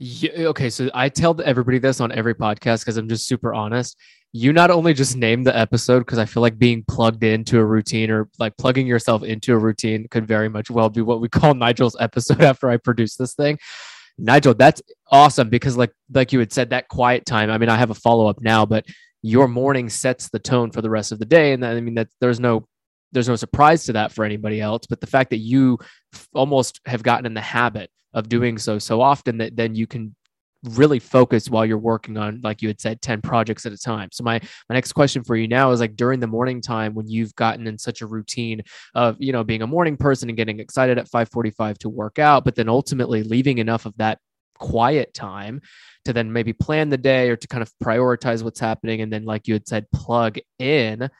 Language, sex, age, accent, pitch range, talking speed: English, male, 20-39, American, 110-130 Hz, 235 wpm